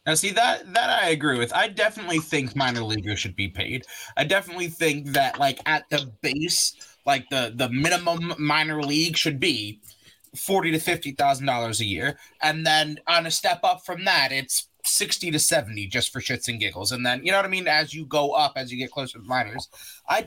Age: 30-49